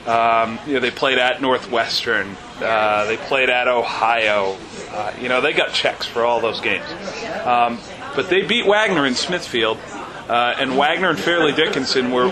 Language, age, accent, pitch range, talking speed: English, 40-59, American, 125-150 Hz, 175 wpm